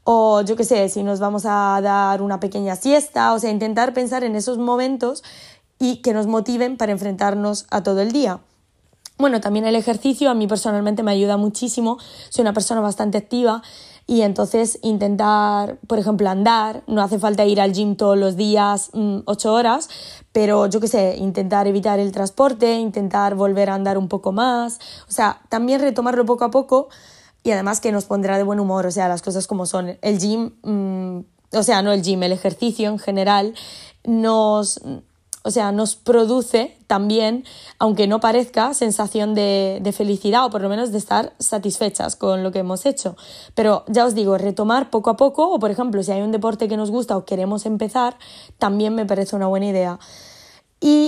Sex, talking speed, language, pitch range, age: female, 185 wpm, Spanish, 200-235 Hz, 20-39